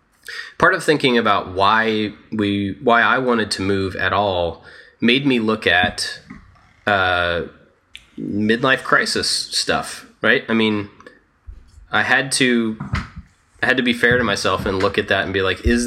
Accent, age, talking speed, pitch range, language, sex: American, 20-39, 160 wpm, 95-110 Hz, English, male